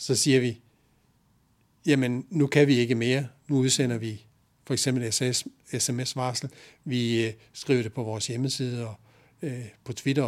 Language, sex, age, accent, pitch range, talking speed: Danish, male, 60-79, native, 115-140 Hz, 140 wpm